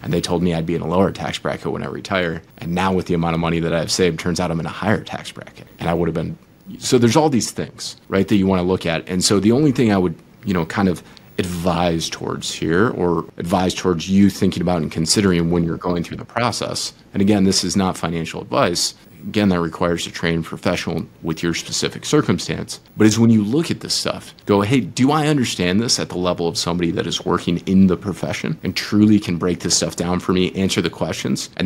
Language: English